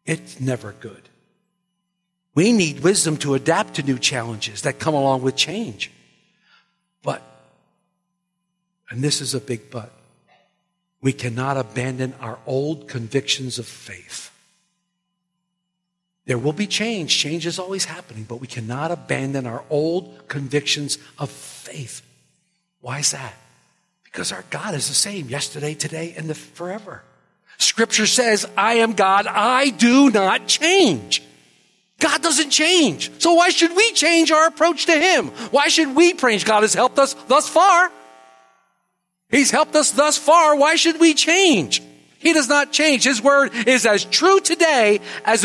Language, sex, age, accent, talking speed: English, male, 50-69, American, 150 wpm